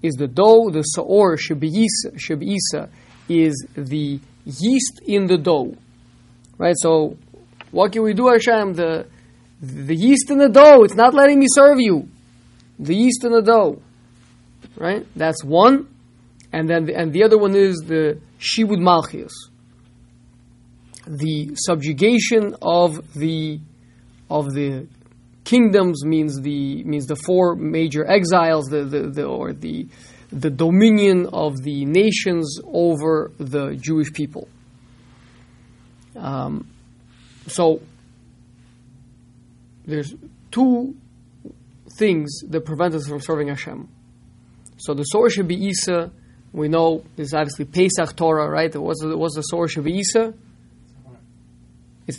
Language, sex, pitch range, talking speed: English, male, 120-180 Hz, 125 wpm